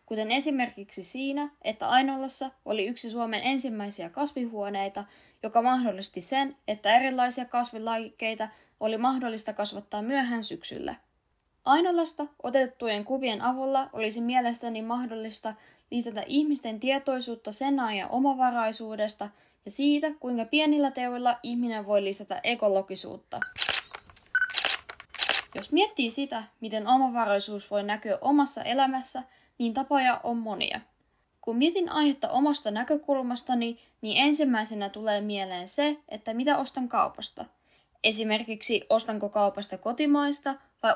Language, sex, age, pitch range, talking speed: Finnish, female, 10-29, 215-270 Hz, 110 wpm